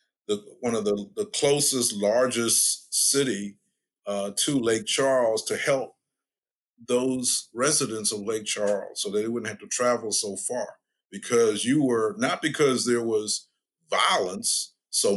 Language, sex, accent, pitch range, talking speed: English, male, American, 100-125 Hz, 145 wpm